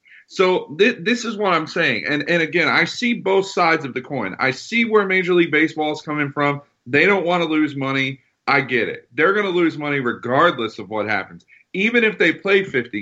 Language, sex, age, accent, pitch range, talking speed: English, male, 40-59, American, 145-190 Hz, 225 wpm